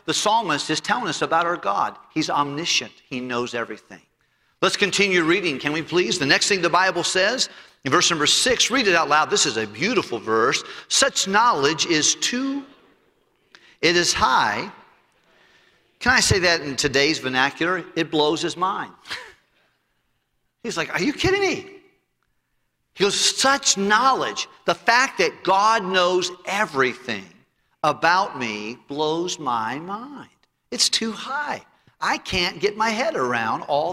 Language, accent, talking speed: English, American, 155 wpm